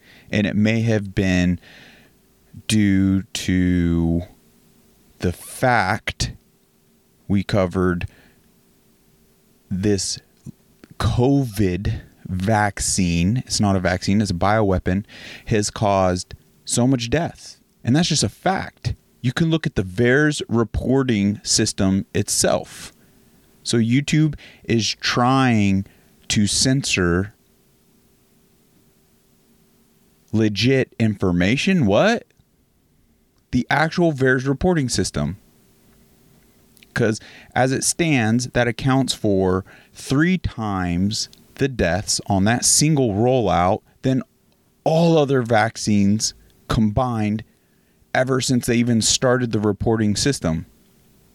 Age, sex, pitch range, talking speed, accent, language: 30-49, male, 95-130 Hz, 95 wpm, American, English